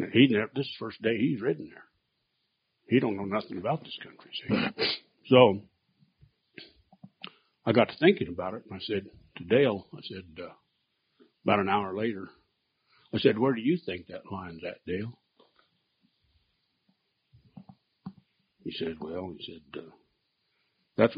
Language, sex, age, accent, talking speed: English, male, 60-79, American, 150 wpm